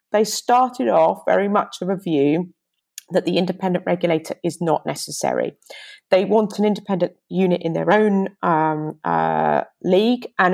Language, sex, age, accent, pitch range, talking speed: English, female, 30-49, British, 165-210 Hz, 155 wpm